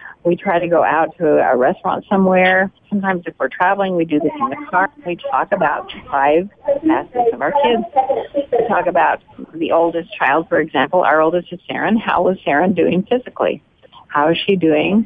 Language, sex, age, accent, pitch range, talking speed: English, female, 50-69, American, 165-230 Hz, 190 wpm